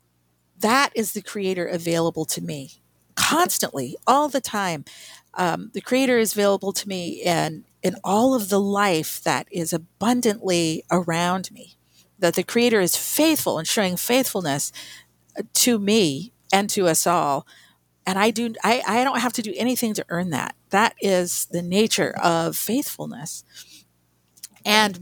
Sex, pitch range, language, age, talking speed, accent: female, 160-215 Hz, English, 50-69, 150 wpm, American